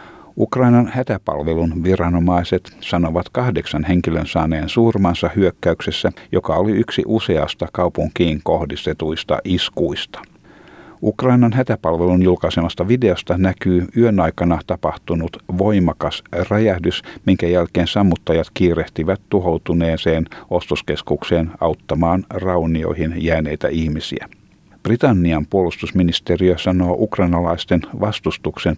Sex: male